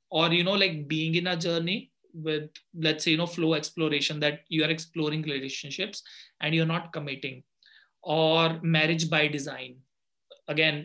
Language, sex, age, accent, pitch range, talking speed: English, male, 20-39, Indian, 150-175 Hz, 160 wpm